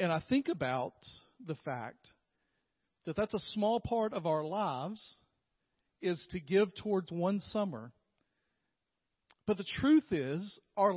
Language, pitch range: English, 155-200 Hz